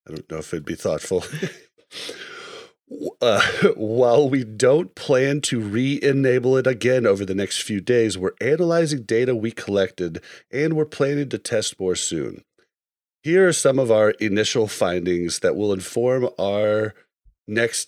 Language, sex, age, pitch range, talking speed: English, male, 30-49, 105-160 Hz, 150 wpm